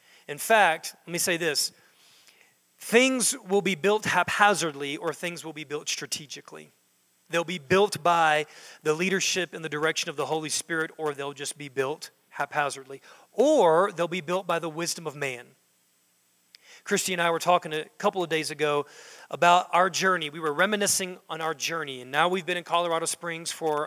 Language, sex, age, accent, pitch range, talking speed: English, male, 40-59, American, 155-195 Hz, 180 wpm